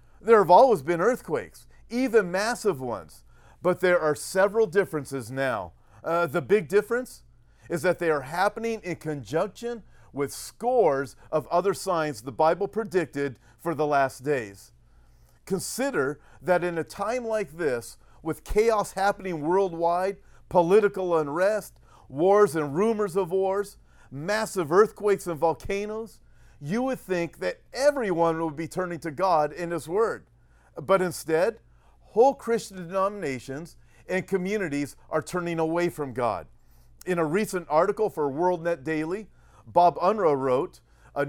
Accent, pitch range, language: American, 145-200 Hz, English